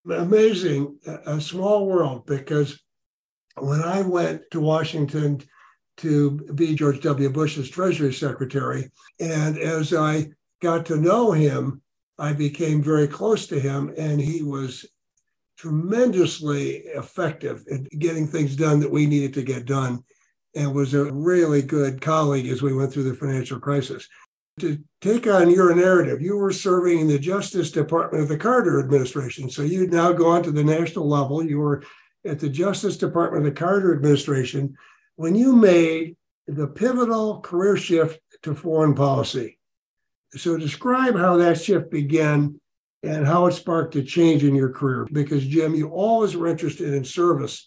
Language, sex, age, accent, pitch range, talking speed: English, male, 60-79, American, 145-175 Hz, 155 wpm